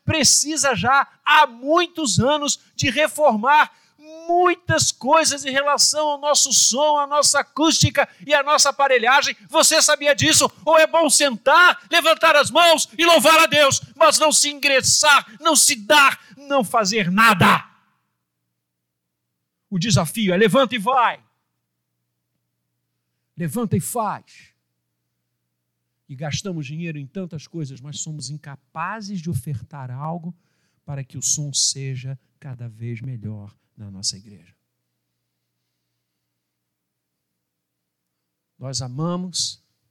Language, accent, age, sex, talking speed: Portuguese, Brazilian, 60-79, male, 120 wpm